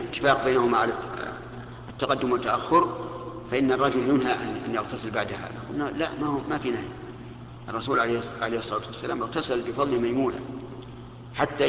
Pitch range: 120-140 Hz